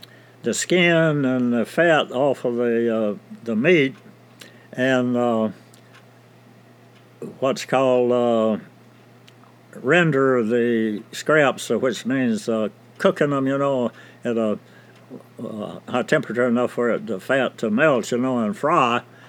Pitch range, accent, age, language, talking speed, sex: 120-150 Hz, American, 60-79, English, 130 wpm, male